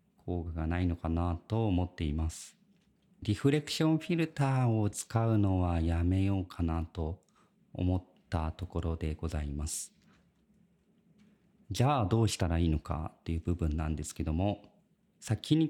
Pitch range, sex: 90-140 Hz, male